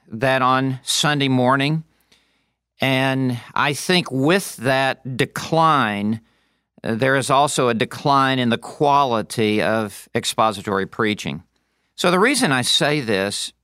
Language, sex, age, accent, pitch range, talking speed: English, male, 50-69, American, 115-145 Hz, 120 wpm